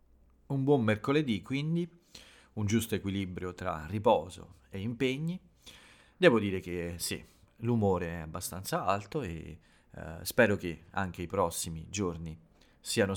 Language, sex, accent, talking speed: Italian, male, native, 130 wpm